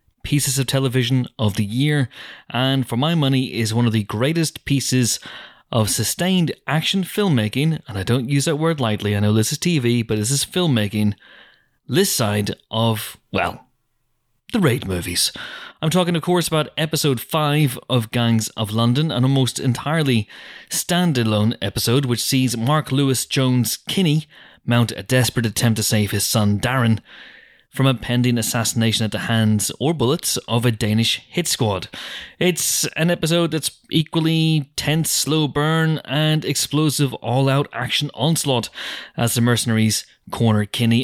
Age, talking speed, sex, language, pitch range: 30-49, 155 wpm, male, English, 110-150 Hz